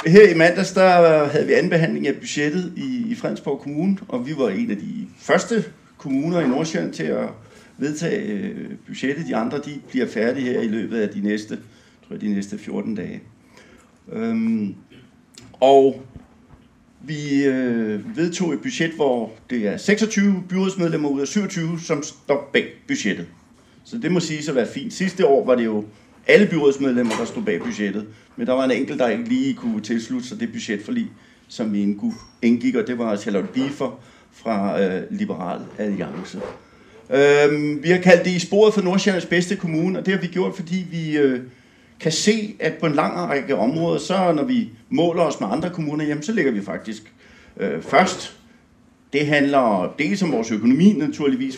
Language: Danish